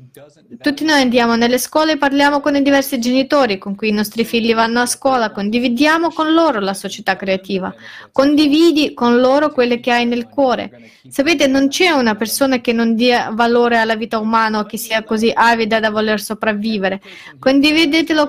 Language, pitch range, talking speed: Italian, 225-275 Hz, 175 wpm